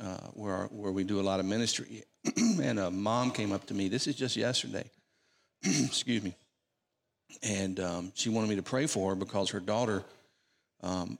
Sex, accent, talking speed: male, American, 190 wpm